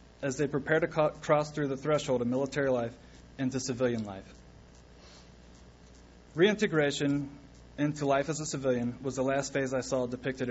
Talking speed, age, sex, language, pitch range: 155 wpm, 20-39, male, English, 110-150 Hz